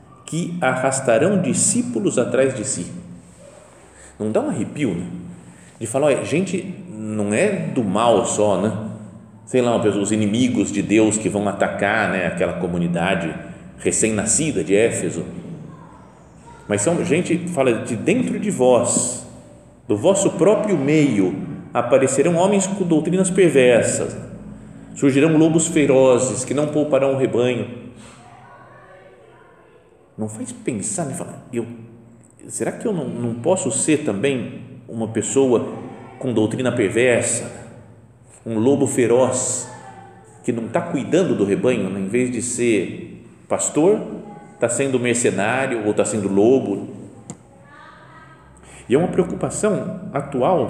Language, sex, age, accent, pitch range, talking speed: Portuguese, male, 40-59, Brazilian, 110-140 Hz, 130 wpm